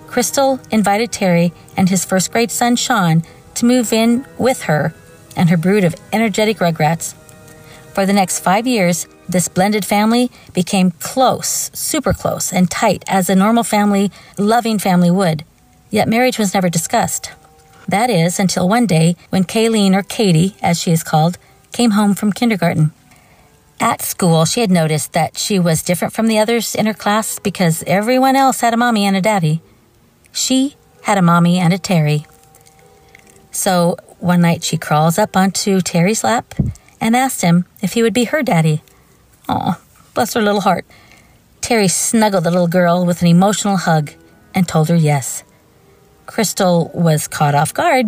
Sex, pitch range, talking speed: female, 165-225 Hz, 165 wpm